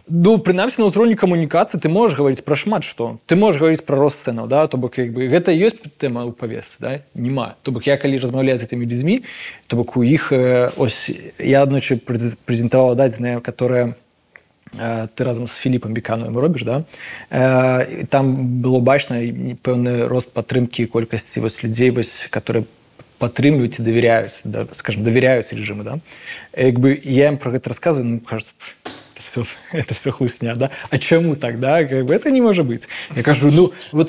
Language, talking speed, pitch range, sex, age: Russian, 185 wpm, 120-165 Hz, male, 20-39